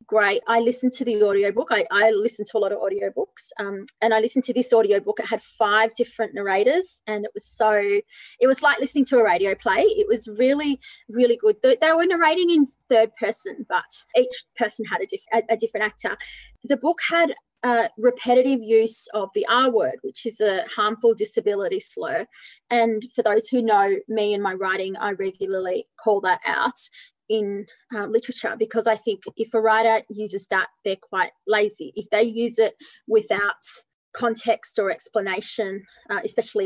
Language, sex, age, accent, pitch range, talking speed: English, female, 20-39, Australian, 215-275 Hz, 185 wpm